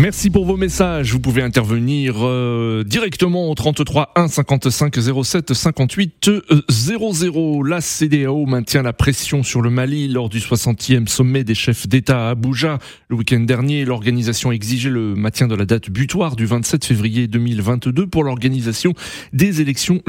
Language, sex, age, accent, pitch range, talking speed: French, male, 30-49, French, 115-150 Hz, 155 wpm